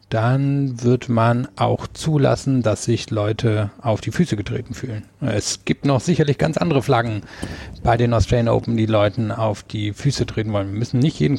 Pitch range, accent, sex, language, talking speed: 110-135 Hz, German, male, German, 185 wpm